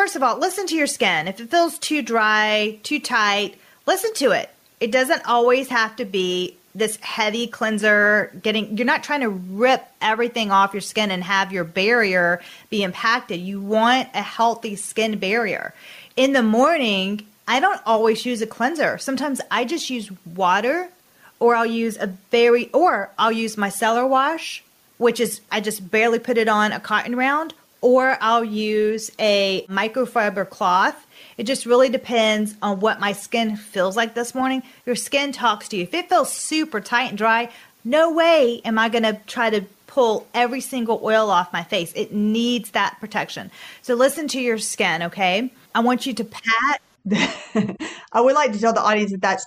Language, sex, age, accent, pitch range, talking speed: English, female, 30-49, American, 210-250 Hz, 185 wpm